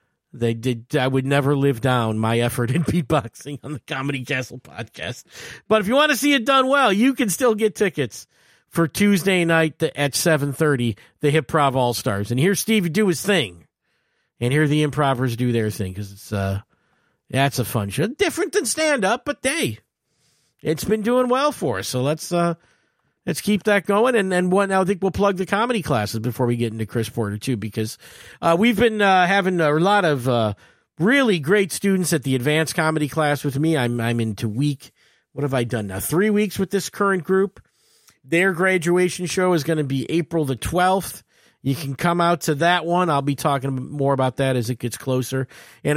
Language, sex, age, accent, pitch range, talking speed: English, male, 50-69, American, 130-185 Hz, 205 wpm